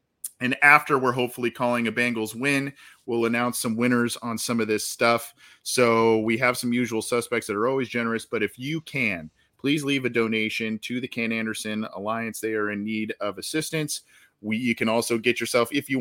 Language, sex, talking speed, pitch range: English, male, 200 wpm, 110-125 Hz